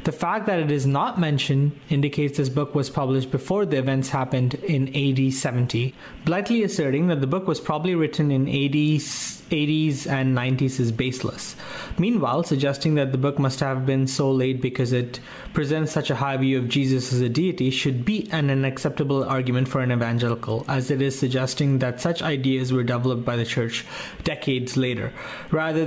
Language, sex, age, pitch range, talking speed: English, male, 30-49, 130-155 Hz, 185 wpm